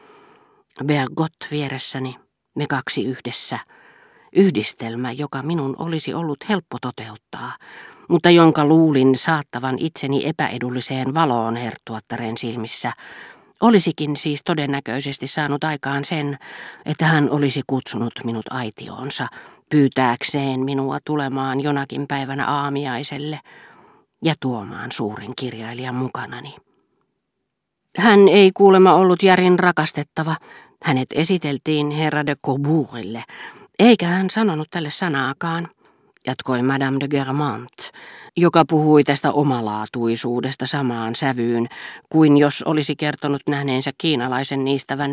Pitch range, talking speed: 130-160 Hz, 105 wpm